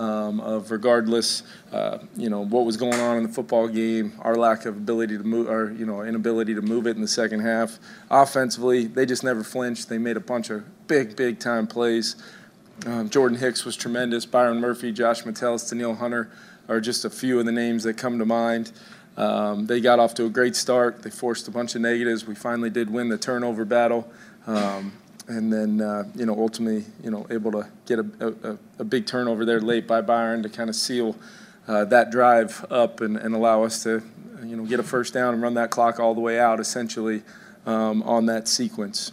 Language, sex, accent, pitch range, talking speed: English, male, American, 110-125 Hz, 215 wpm